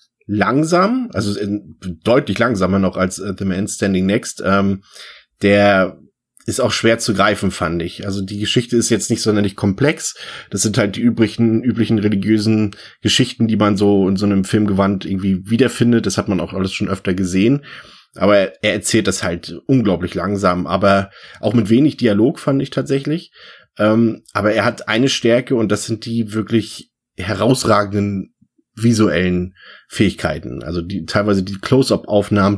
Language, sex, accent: German, male, German